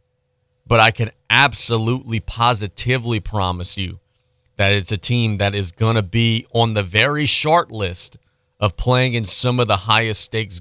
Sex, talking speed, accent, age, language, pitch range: male, 165 wpm, American, 30-49, English, 95-125 Hz